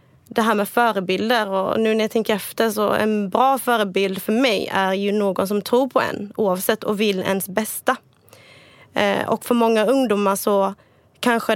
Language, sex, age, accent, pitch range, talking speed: English, female, 20-39, Swedish, 195-235 Hz, 175 wpm